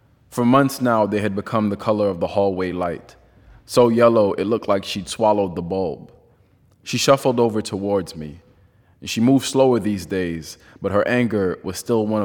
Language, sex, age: English, male, 20-39